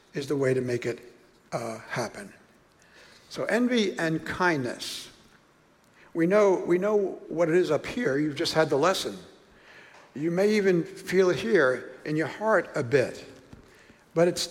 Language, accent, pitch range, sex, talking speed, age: English, American, 150-190 Hz, male, 160 wpm, 60-79